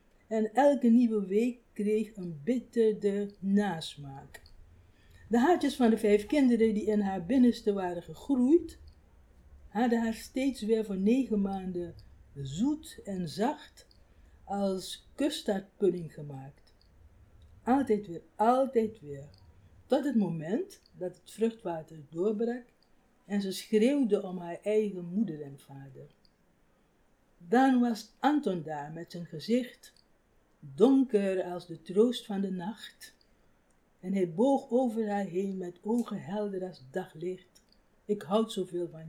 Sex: female